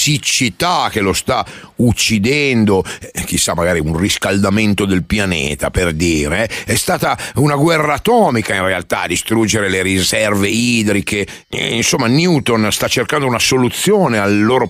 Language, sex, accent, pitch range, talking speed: Italian, male, native, 95-125 Hz, 135 wpm